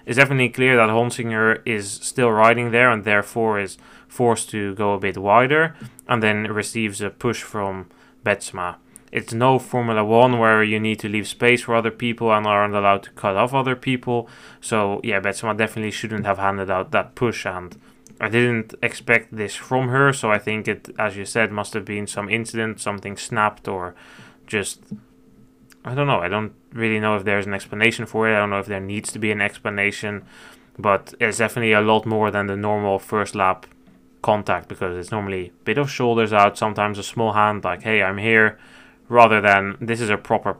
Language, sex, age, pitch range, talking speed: English, male, 20-39, 100-115 Hz, 200 wpm